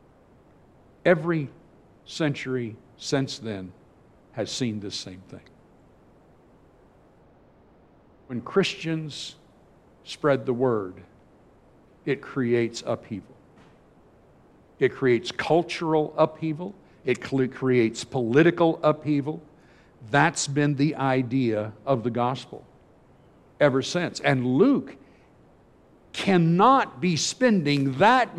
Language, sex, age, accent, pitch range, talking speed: English, male, 60-79, American, 135-190 Hz, 85 wpm